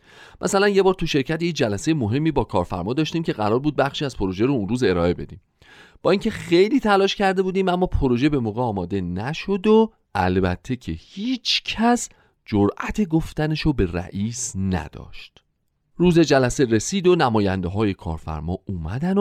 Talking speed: 160 wpm